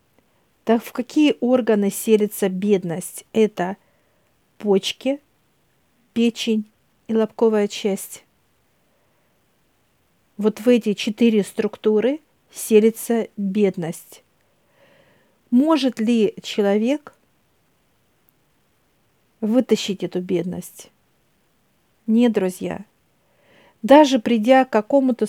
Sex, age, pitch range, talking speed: female, 50-69, 195-240 Hz, 75 wpm